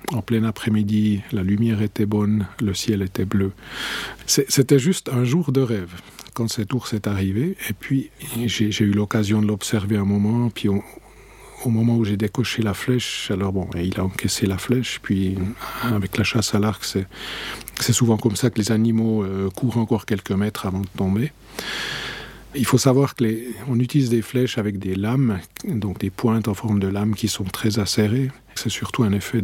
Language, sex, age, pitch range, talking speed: French, male, 50-69, 100-120 Hz, 200 wpm